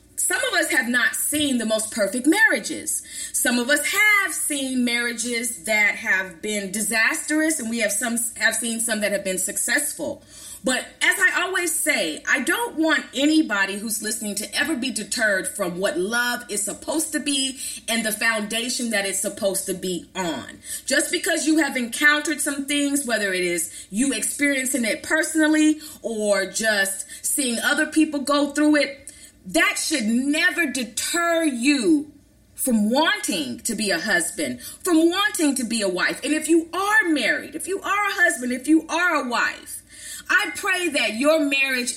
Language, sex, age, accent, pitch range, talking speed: English, female, 30-49, American, 230-305 Hz, 175 wpm